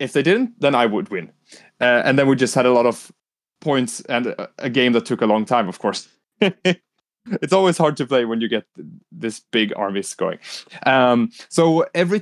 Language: English